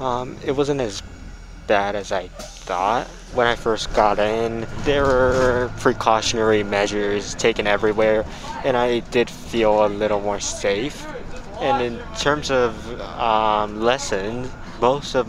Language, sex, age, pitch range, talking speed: English, male, 20-39, 100-115 Hz, 135 wpm